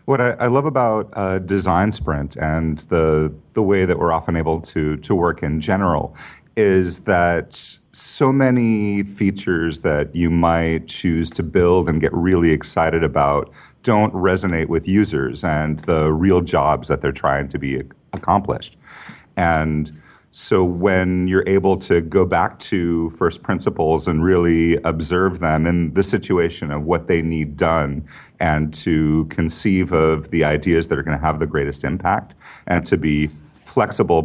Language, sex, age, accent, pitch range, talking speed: English, male, 40-59, American, 80-95 Hz, 160 wpm